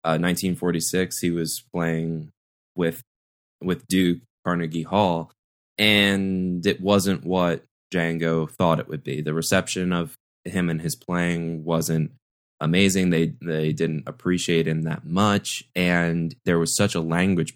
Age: 20-39